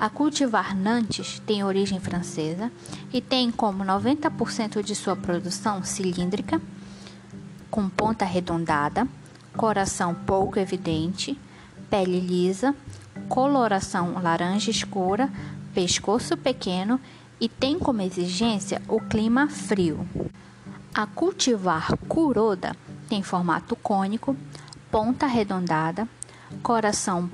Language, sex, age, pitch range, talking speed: Portuguese, female, 10-29, 185-245 Hz, 95 wpm